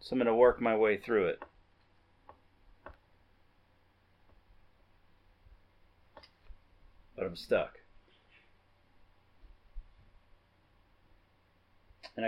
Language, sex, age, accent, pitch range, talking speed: English, male, 40-59, American, 90-110 Hz, 65 wpm